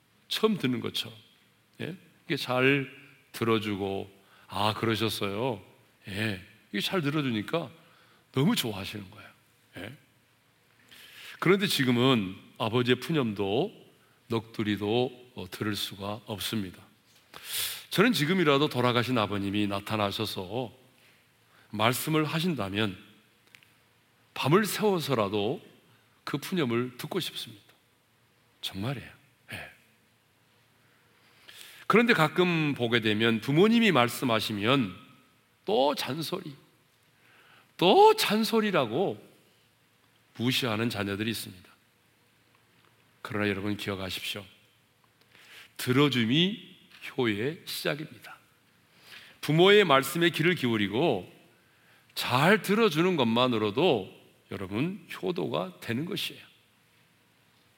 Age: 40-59